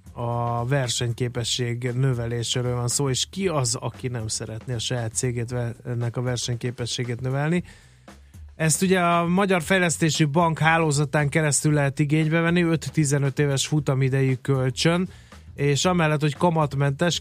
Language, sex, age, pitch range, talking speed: Hungarian, male, 20-39, 125-150 Hz, 130 wpm